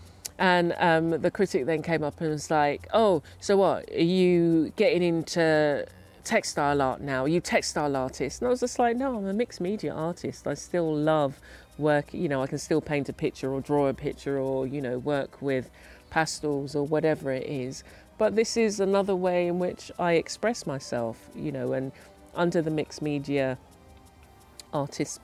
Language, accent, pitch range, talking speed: English, British, 135-165 Hz, 190 wpm